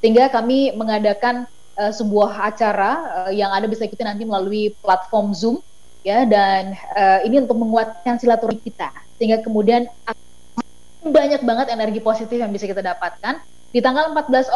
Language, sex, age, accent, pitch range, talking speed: Indonesian, female, 20-39, native, 220-275 Hz, 150 wpm